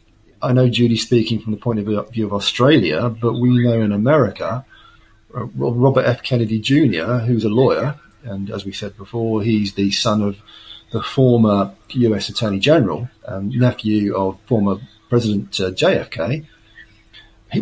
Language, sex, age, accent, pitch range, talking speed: English, male, 40-59, British, 105-130 Hz, 155 wpm